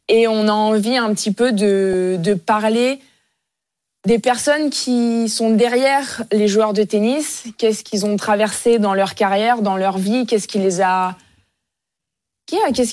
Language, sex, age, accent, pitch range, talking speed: French, female, 20-39, French, 195-230 Hz, 160 wpm